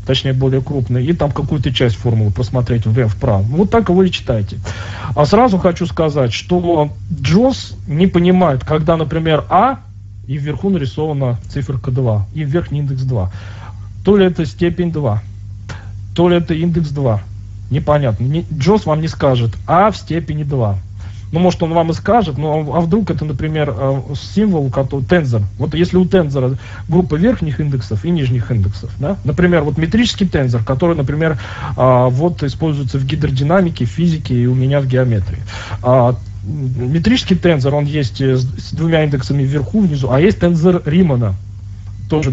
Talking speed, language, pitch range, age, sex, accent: 160 wpm, Russian, 115-160 Hz, 40-59, male, native